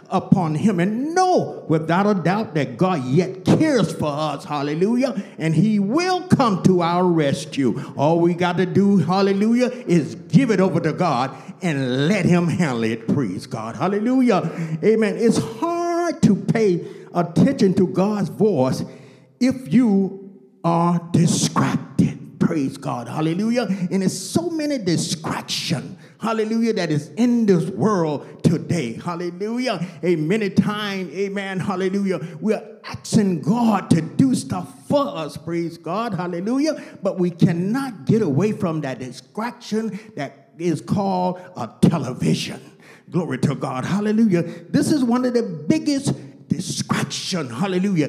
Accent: American